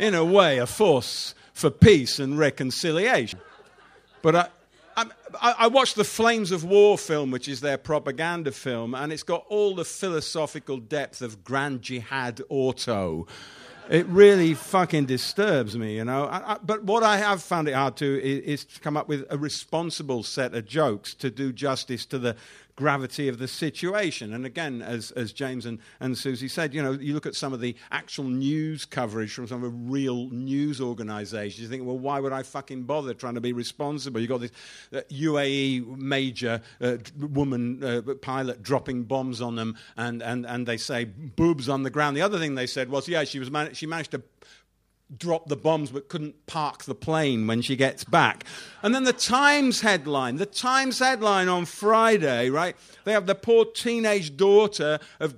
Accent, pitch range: British, 130-170 Hz